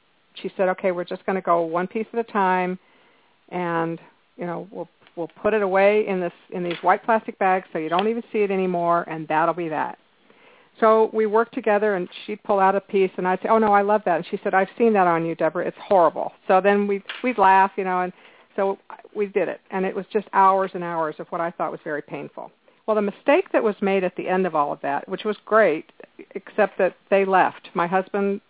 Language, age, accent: English, 50-69, American